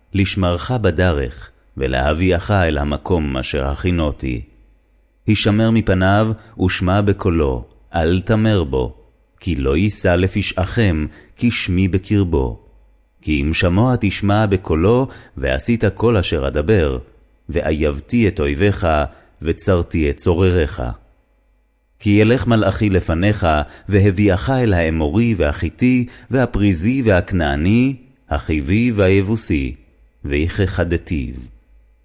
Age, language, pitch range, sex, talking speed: 30-49, Hebrew, 75-100 Hz, male, 90 wpm